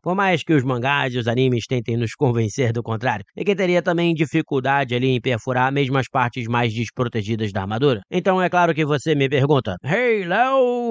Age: 20-39